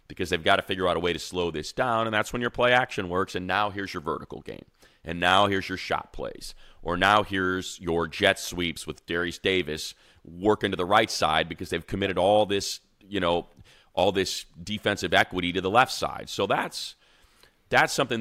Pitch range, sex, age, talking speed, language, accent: 85-105 Hz, male, 30-49, 210 wpm, English, American